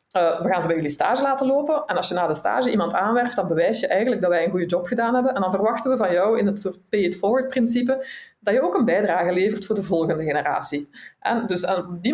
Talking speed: 270 wpm